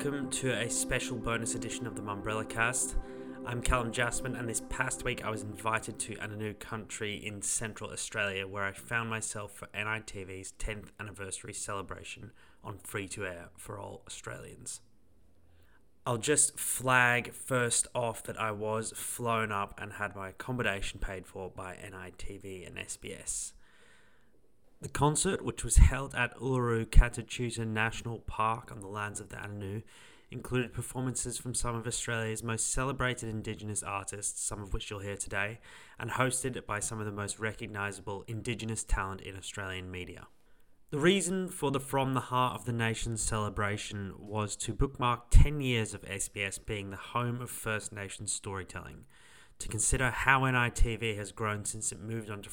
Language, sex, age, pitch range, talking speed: English, male, 20-39, 100-120 Hz, 160 wpm